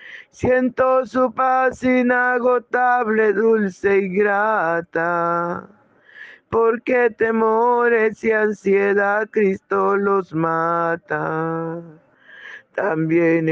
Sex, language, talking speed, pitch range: male, Spanish, 65 wpm, 170-220 Hz